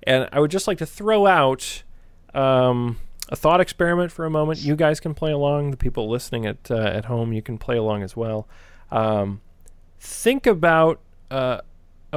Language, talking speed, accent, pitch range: English, 180 wpm, American, 105-170 Hz